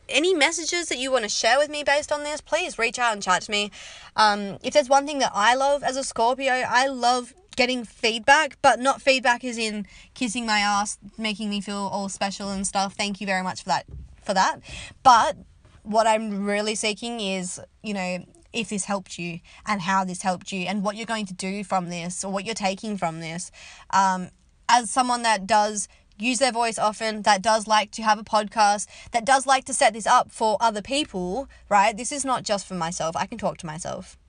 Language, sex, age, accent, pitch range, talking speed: English, female, 20-39, Australian, 200-255 Hz, 220 wpm